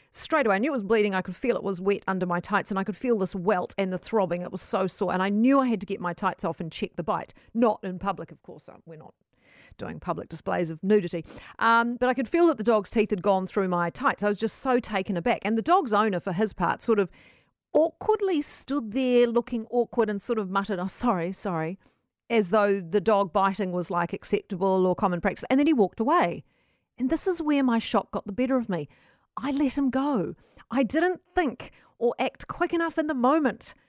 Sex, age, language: female, 40-59, English